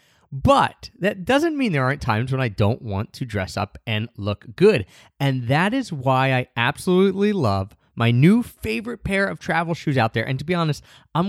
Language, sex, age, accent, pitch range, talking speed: English, male, 30-49, American, 115-150 Hz, 200 wpm